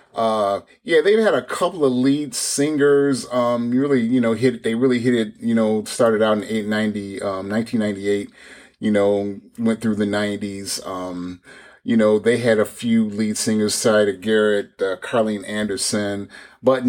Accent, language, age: American, English, 30-49